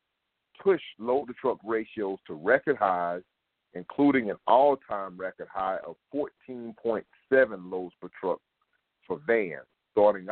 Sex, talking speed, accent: male, 110 wpm, American